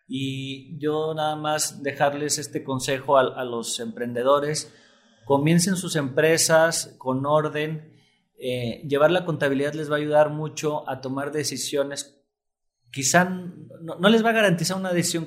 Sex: male